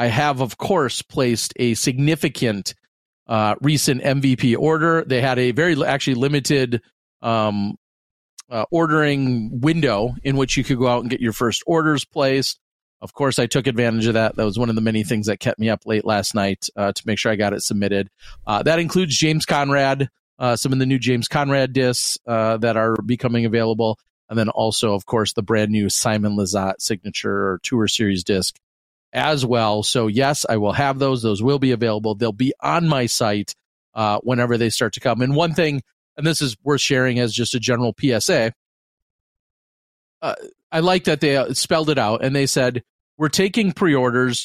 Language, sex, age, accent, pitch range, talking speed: English, male, 40-59, American, 110-140 Hz, 195 wpm